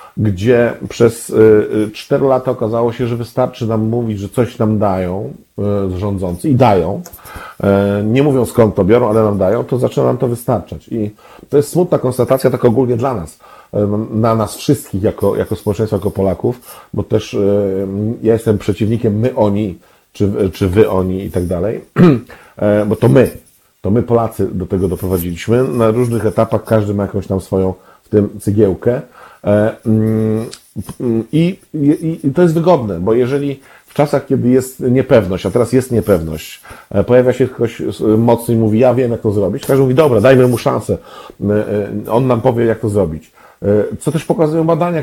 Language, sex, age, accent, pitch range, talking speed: Polish, male, 50-69, native, 105-130 Hz, 165 wpm